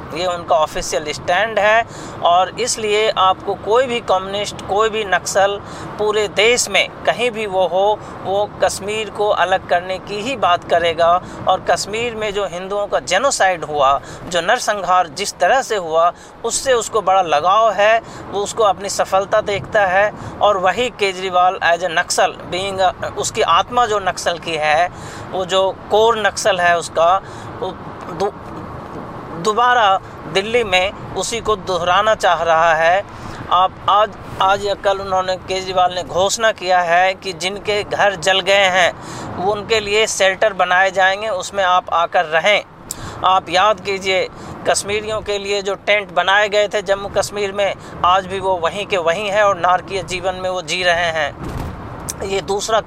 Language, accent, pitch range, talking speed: Hindi, native, 180-210 Hz, 160 wpm